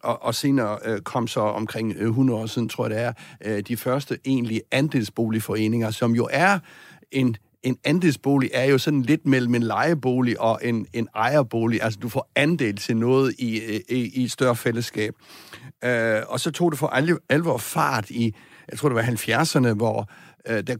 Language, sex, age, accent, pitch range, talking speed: Danish, male, 60-79, native, 115-145 Hz, 175 wpm